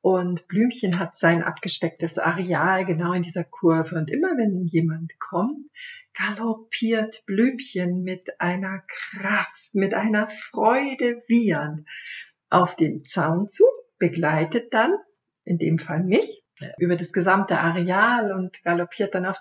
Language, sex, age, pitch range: German, female, 50-69, 175-225 Hz